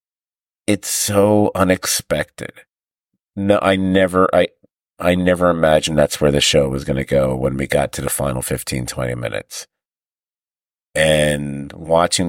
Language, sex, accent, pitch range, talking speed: English, male, American, 75-95 Hz, 140 wpm